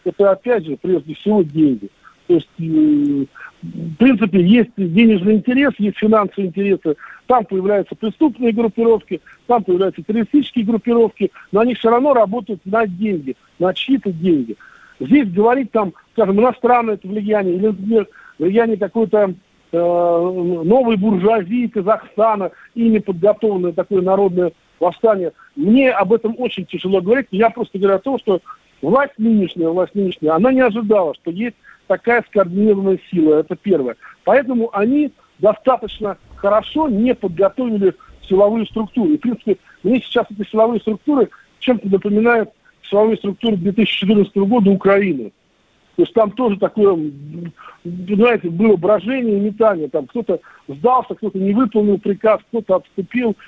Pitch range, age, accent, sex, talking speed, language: 190-230 Hz, 50-69, native, male, 135 wpm, Russian